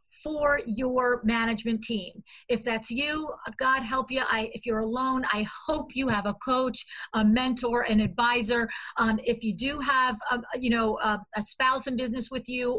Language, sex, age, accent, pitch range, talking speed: English, female, 40-59, American, 215-255 Hz, 185 wpm